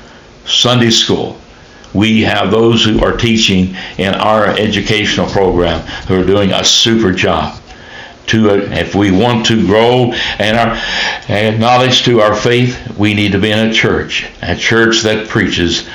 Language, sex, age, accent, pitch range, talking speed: English, male, 60-79, American, 95-115 Hz, 160 wpm